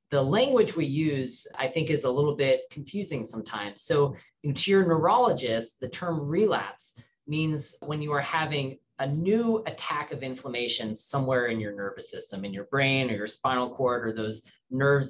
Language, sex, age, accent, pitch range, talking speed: English, male, 30-49, American, 130-170 Hz, 175 wpm